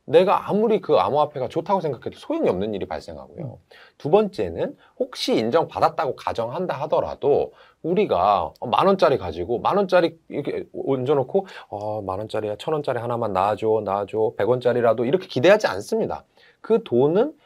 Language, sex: Korean, male